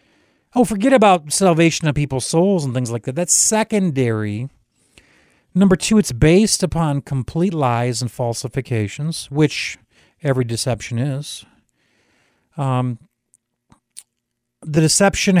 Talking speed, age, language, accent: 115 wpm, 40-59, English, American